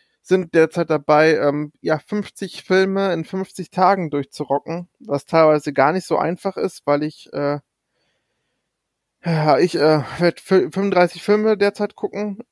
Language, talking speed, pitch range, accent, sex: German, 135 wpm, 150-185 Hz, German, male